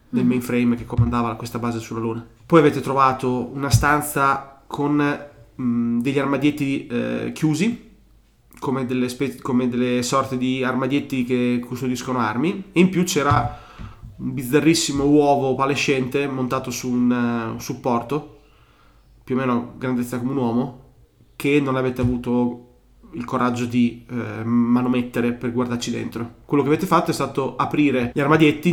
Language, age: Italian, 20-39